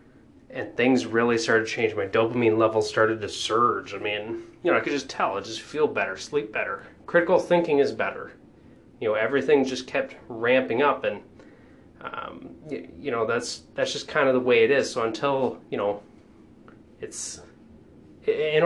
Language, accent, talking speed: English, American, 185 wpm